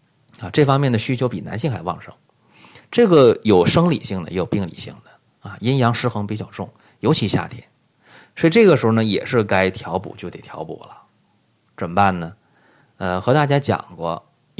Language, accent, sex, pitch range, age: Chinese, native, male, 95-130 Hz, 30-49